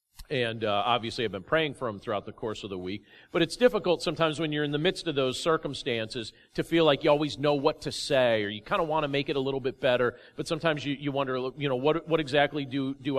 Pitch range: 105-145 Hz